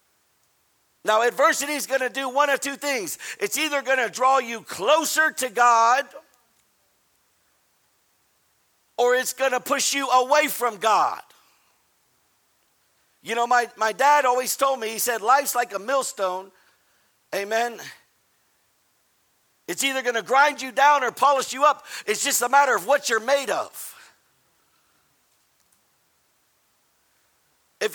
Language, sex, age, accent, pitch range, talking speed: English, male, 60-79, American, 230-280 Hz, 130 wpm